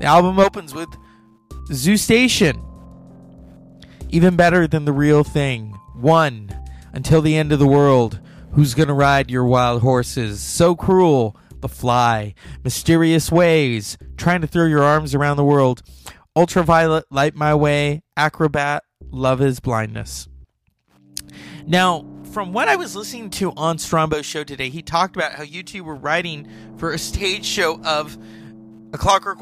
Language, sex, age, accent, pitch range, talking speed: English, male, 30-49, American, 115-165 Hz, 150 wpm